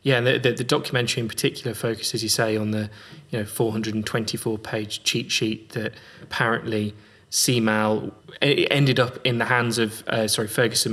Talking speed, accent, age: 170 wpm, British, 20-39